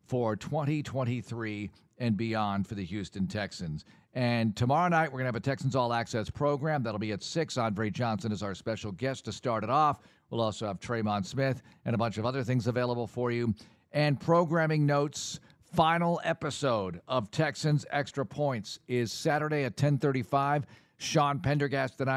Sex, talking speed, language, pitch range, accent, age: male, 170 wpm, English, 110-145 Hz, American, 50-69